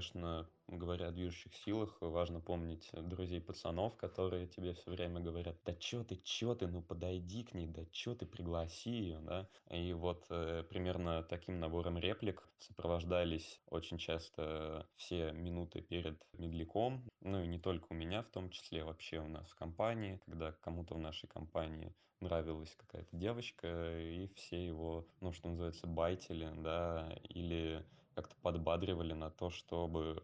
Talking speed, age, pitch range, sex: 155 wpm, 20-39, 80-90 Hz, male